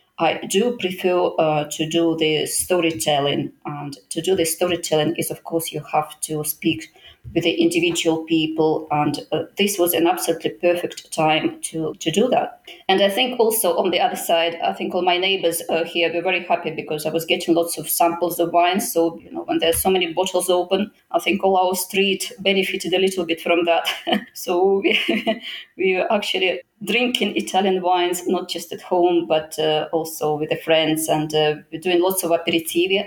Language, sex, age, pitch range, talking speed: English, female, 20-39, 160-195 Hz, 190 wpm